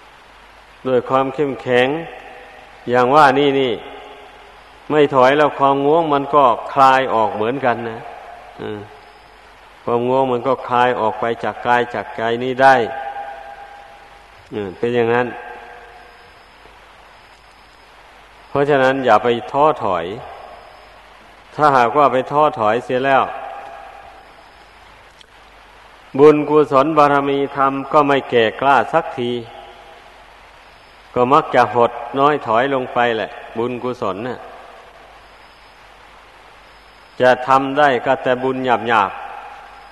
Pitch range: 120-140 Hz